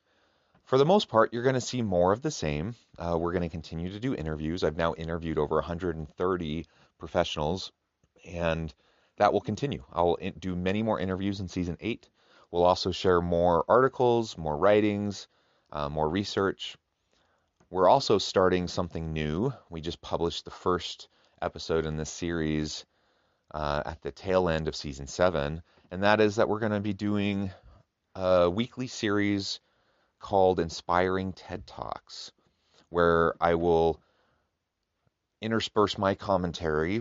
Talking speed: 150 wpm